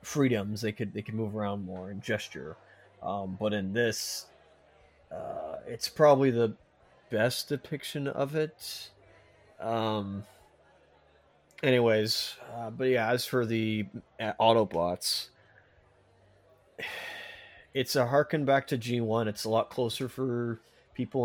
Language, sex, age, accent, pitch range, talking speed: English, male, 30-49, American, 100-120 Hz, 125 wpm